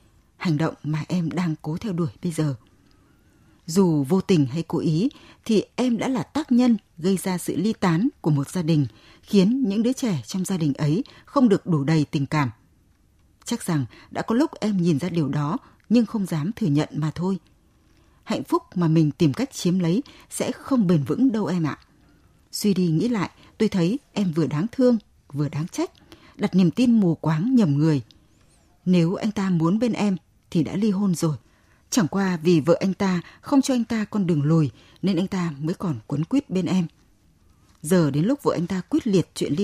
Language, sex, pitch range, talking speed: Vietnamese, female, 155-215 Hz, 210 wpm